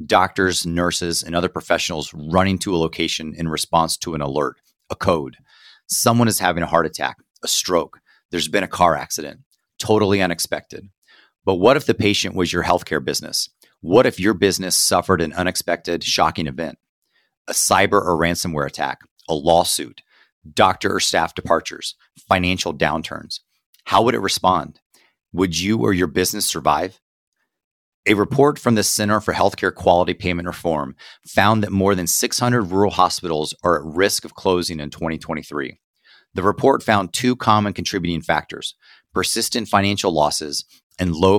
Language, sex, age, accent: English, male, 30-49, American